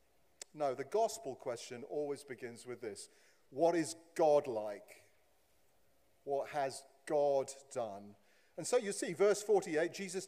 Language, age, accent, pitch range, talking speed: English, 50-69, British, 125-185 Hz, 135 wpm